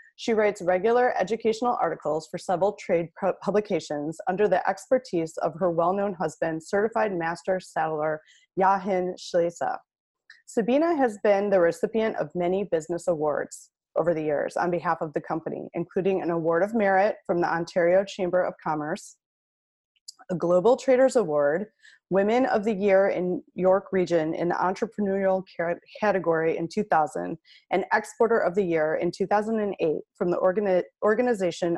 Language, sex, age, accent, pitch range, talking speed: English, female, 20-39, American, 170-210 Hz, 145 wpm